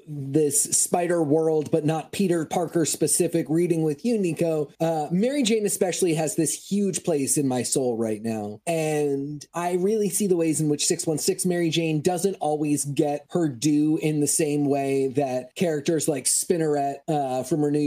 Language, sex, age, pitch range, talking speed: English, male, 30-49, 150-200 Hz, 180 wpm